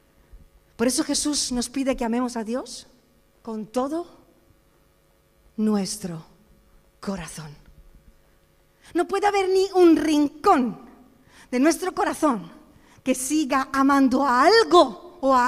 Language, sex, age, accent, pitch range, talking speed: Spanish, female, 40-59, Spanish, 240-400 Hz, 110 wpm